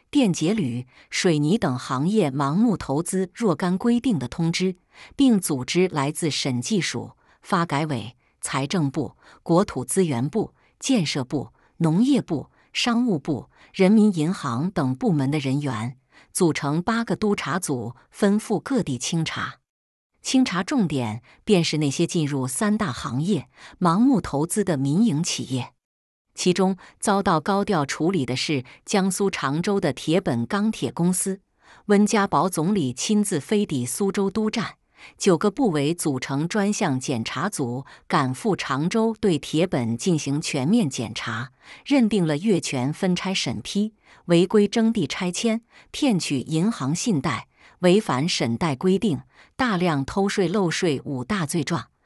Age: 50-69